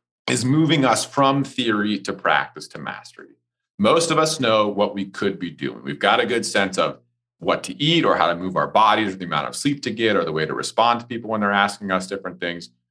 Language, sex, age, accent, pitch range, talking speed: English, male, 40-59, American, 95-135 Hz, 245 wpm